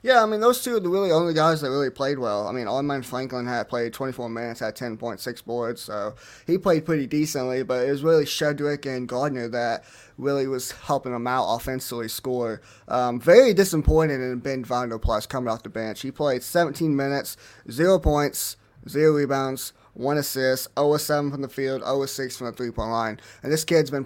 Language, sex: English, male